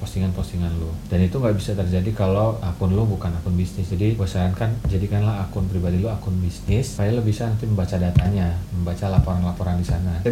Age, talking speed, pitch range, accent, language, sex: 30-49, 190 wpm, 90-110 Hz, native, Indonesian, male